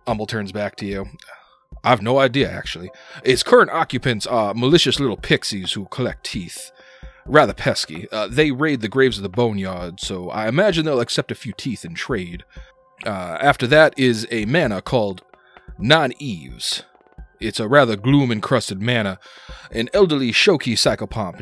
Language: English